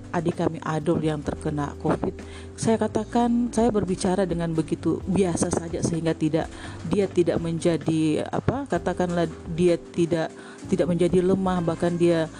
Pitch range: 170-205 Hz